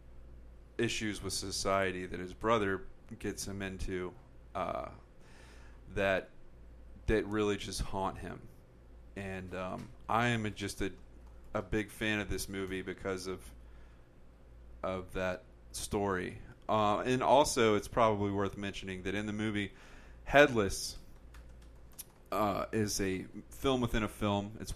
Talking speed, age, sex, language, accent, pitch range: 130 wpm, 30-49, male, English, American, 90-105 Hz